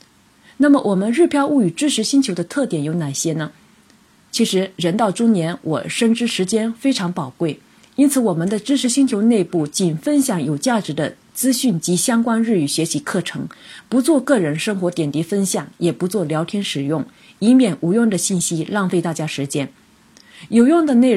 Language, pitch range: Chinese, 165-230 Hz